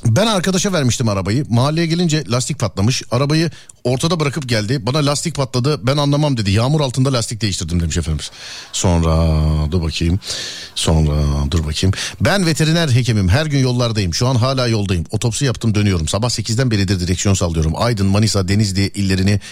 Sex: male